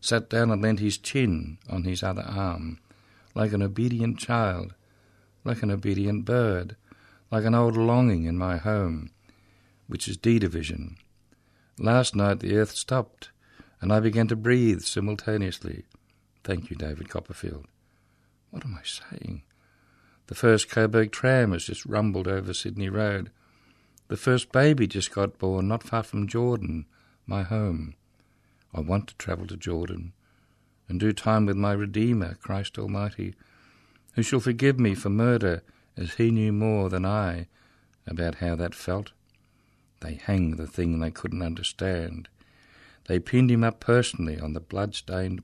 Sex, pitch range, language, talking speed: male, 90-115 Hz, English, 150 wpm